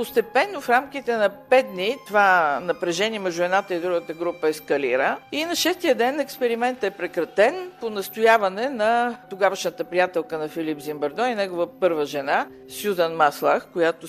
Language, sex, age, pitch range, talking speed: Bulgarian, female, 50-69, 175-240 Hz, 155 wpm